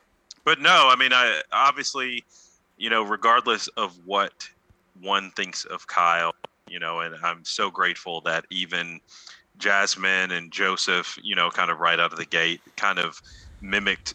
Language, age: English, 30-49